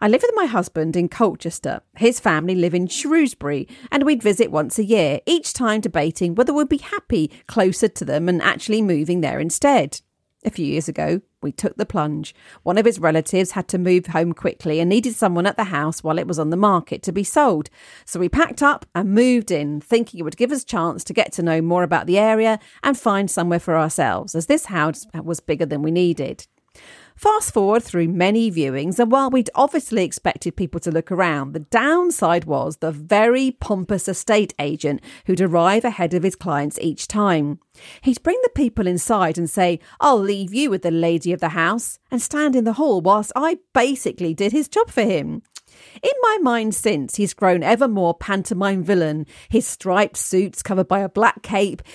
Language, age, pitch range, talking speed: English, 40-59, 170-230 Hz, 205 wpm